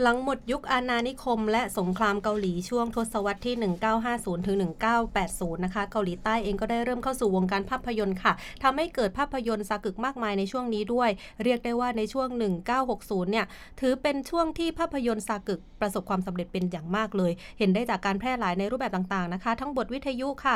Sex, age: female, 30-49